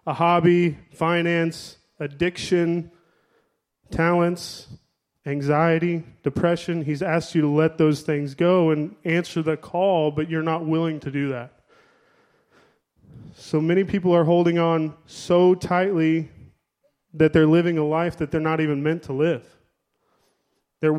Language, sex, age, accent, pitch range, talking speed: English, male, 20-39, American, 150-170 Hz, 135 wpm